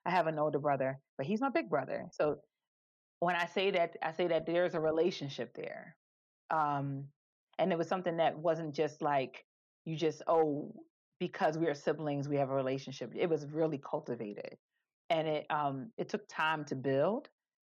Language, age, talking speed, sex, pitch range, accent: English, 30-49, 185 wpm, female, 145-175 Hz, American